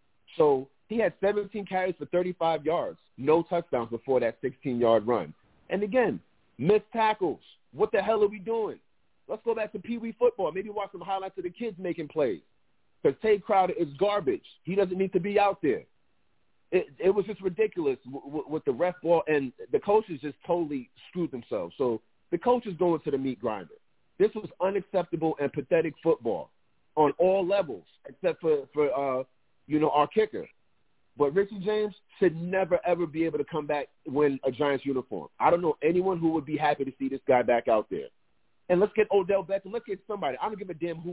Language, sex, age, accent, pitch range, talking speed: English, male, 40-59, American, 160-240 Hz, 205 wpm